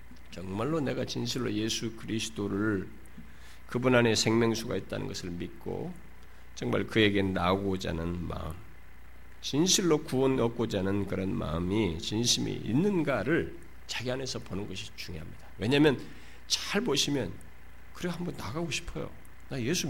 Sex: male